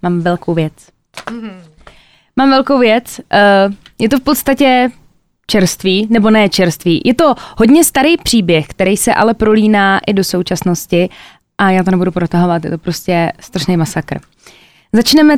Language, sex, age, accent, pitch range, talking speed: Czech, female, 20-39, native, 180-220 Hz, 145 wpm